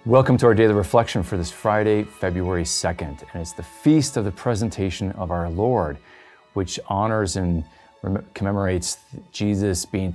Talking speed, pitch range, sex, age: 165 wpm, 90-105 Hz, male, 30-49